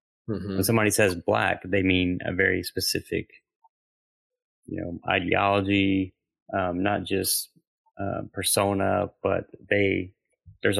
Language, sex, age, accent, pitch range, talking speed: English, male, 30-49, American, 95-110 Hz, 110 wpm